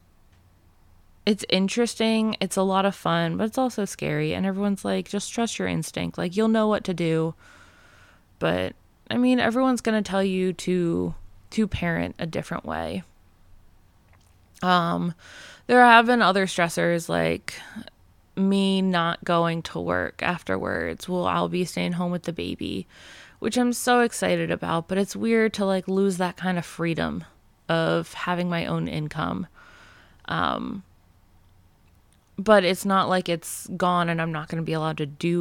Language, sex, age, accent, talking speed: English, female, 20-39, American, 160 wpm